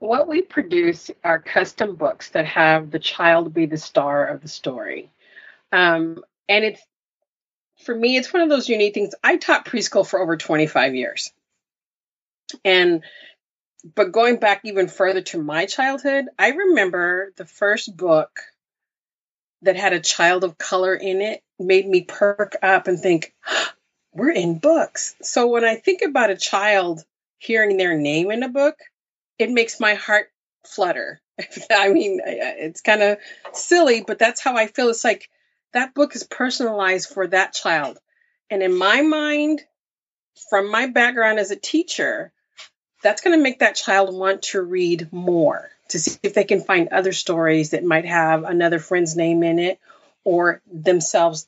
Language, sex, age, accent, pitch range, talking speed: English, female, 30-49, American, 180-265 Hz, 165 wpm